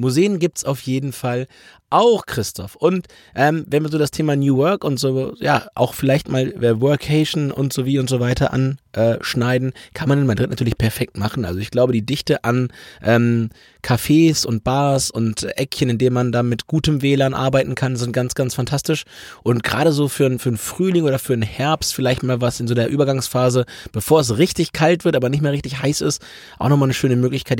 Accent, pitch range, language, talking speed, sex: German, 125-165 Hz, German, 215 wpm, male